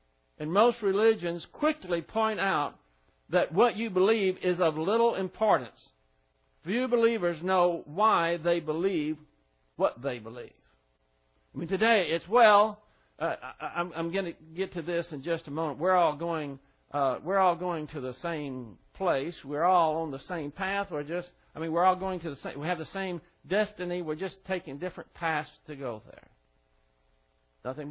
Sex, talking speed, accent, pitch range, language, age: male, 170 wpm, American, 140-205 Hz, English, 50-69